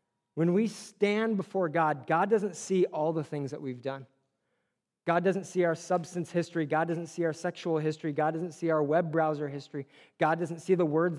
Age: 30-49